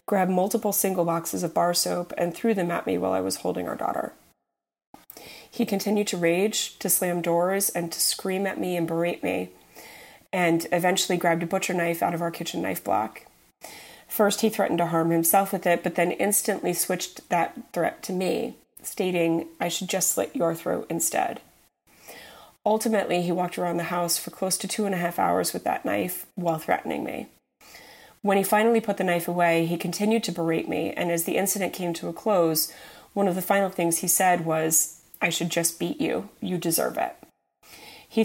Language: English